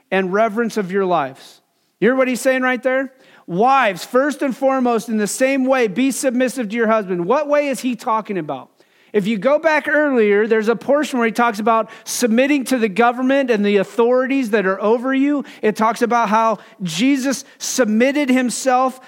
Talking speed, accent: 190 wpm, American